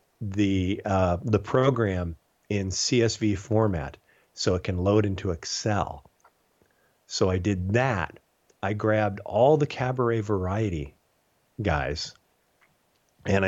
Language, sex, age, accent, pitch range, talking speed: English, male, 40-59, American, 90-110 Hz, 110 wpm